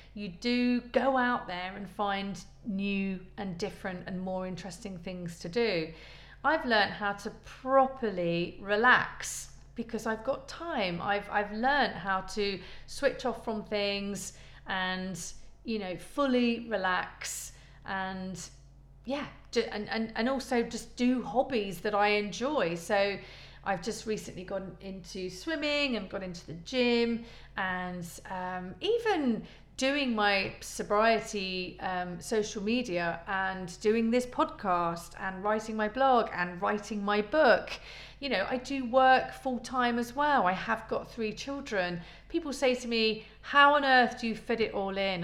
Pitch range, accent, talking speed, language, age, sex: 185-245 Hz, British, 150 wpm, English, 40-59, female